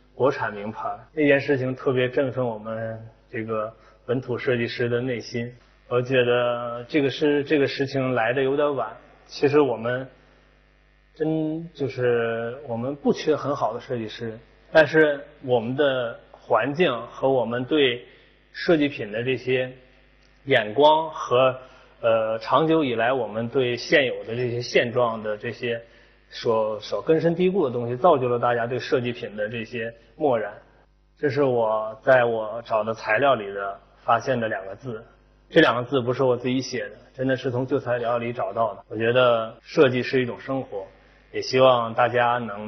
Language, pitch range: Chinese, 115-135 Hz